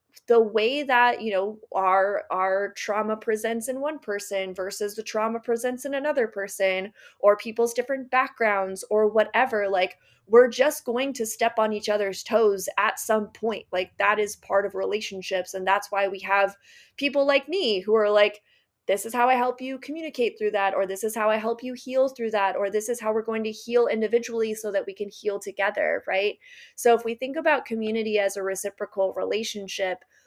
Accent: American